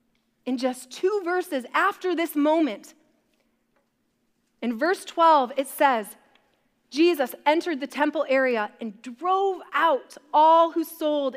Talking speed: 120 wpm